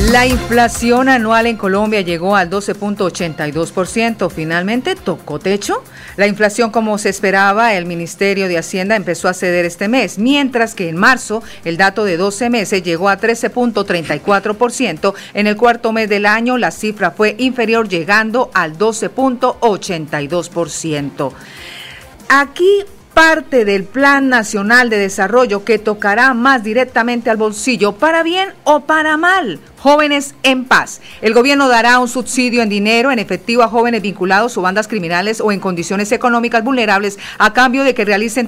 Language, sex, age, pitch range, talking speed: Spanish, female, 50-69, 200-250 Hz, 150 wpm